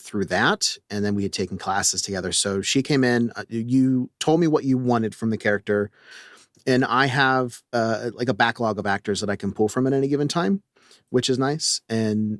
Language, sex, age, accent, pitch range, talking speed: English, male, 30-49, American, 105-130 Hz, 215 wpm